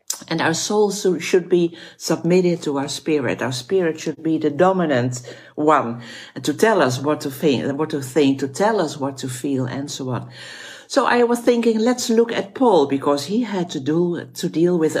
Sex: female